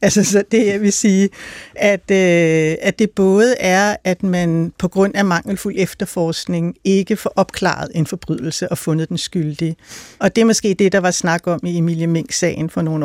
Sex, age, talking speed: female, 60-79, 200 wpm